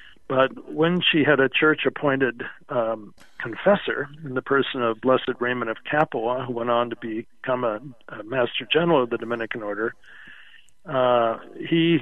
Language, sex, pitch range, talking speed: English, male, 120-145 Hz, 150 wpm